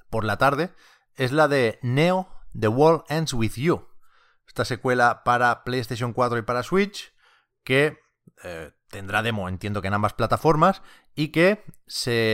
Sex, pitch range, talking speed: male, 105-150 Hz, 155 wpm